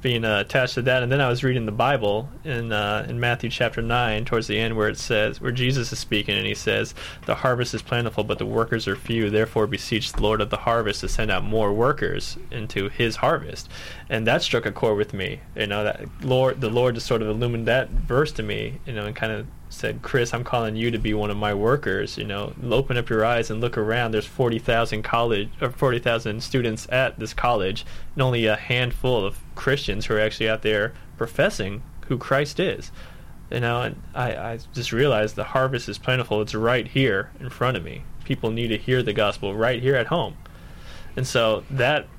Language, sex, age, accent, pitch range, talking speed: English, male, 10-29, American, 110-130 Hz, 225 wpm